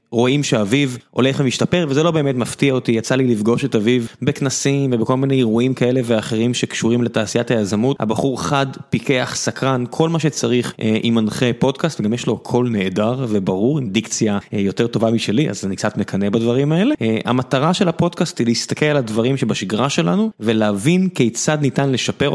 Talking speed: 175 wpm